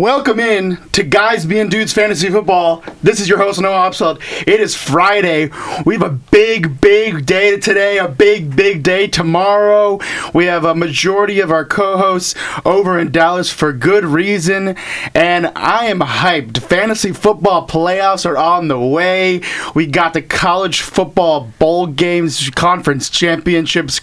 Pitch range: 150-195 Hz